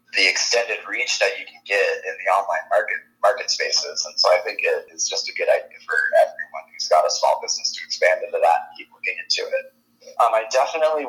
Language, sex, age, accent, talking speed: English, male, 20-39, American, 220 wpm